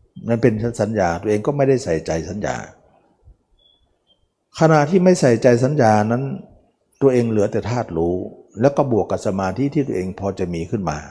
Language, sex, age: Thai, male, 60-79